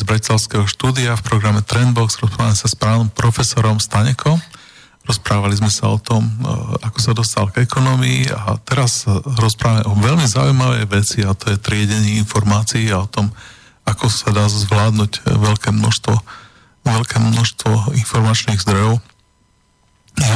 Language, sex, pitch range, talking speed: Slovak, male, 105-120 Hz, 140 wpm